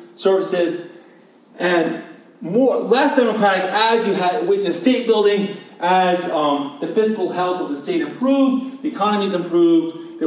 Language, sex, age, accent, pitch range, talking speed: English, male, 30-49, American, 175-255 Hz, 140 wpm